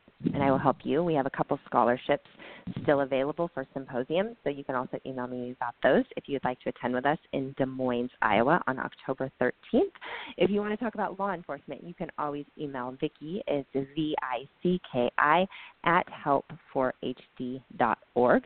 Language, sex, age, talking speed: English, female, 30-49, 185 wpm